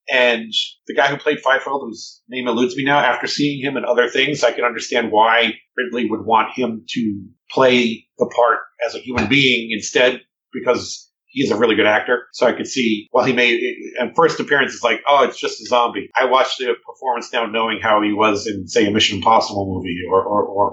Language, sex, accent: English, male, American